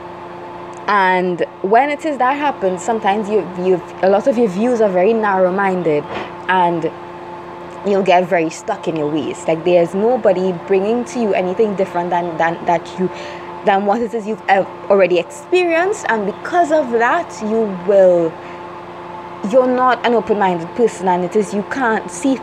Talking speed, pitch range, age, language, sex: 165 wpm, 175-260 Hz, 20-39, English, female